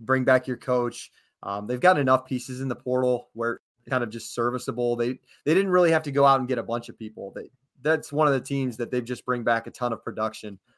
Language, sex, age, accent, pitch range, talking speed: English, male, 20-39, American, 115-135 Hz, 255 wpm